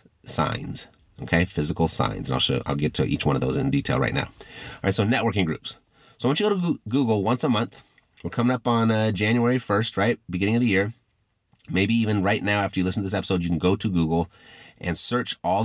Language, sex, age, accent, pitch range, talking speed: English, male, 30-49, American, 90-115 Hz, 240 wpm